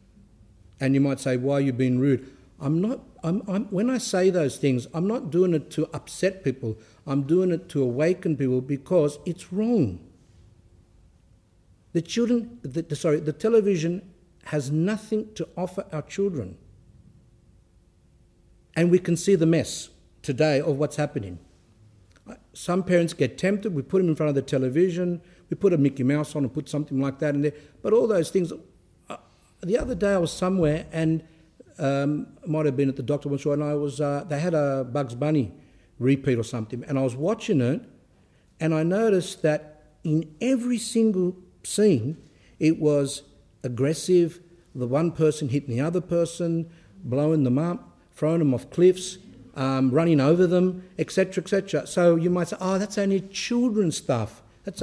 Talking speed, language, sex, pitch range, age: 175 wpm, English, male, 130-180 Hz, 60-79